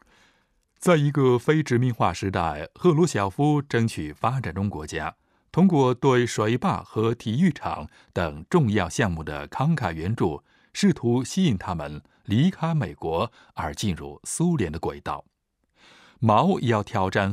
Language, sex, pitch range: Chinese, male, 90-150 Hz